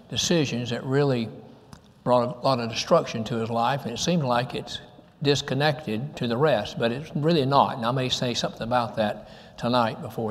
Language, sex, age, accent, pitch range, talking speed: English, male, 60-79, American, 115-150 Hz, 190 wpm